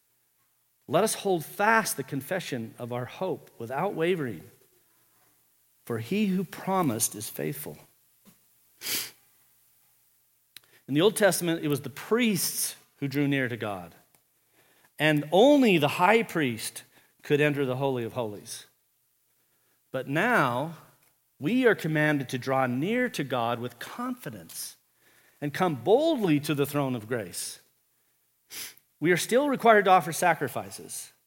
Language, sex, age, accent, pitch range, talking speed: English, male, 50-69, American, 135-200 Hz, 130 wpm